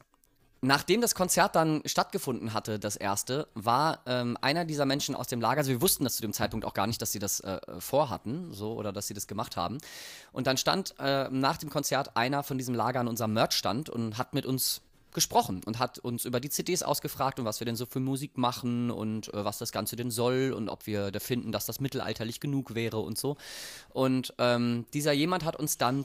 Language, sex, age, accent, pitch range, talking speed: German, male, 30-49, German, 110-135 Hz, 225 wpm